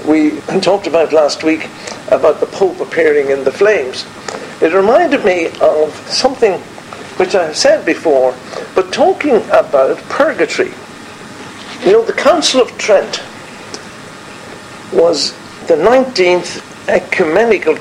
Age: 60-79